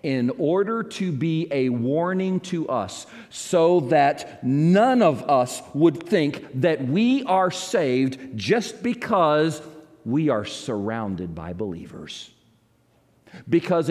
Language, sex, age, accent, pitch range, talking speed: English, male, 50-69, American, 110-160 Hz, 115 wpm